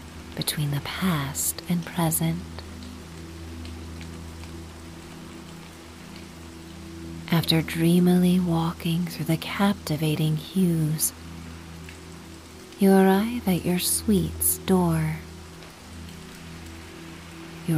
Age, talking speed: 40-59, 65 wpm